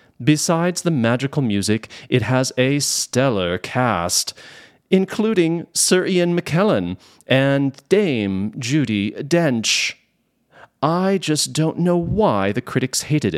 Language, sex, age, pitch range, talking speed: English, male, 40-59, 100-155 Hz, 110 wpm